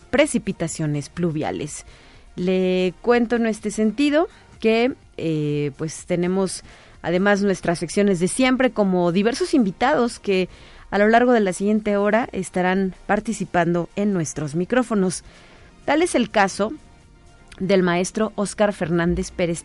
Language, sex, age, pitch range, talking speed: Spanish, female, 30-49, 170-225 Hz, 125 wpm